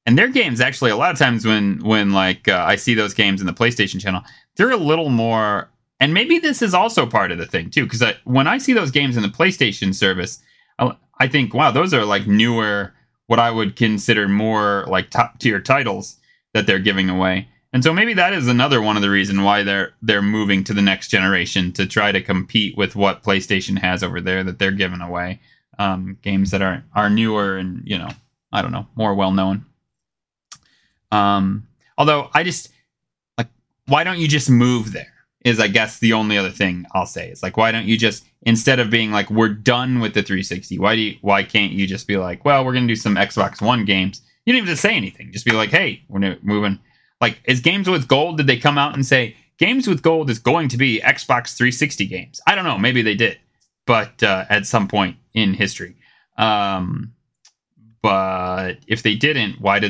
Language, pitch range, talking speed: English, 100-125 Hz, 215 wpm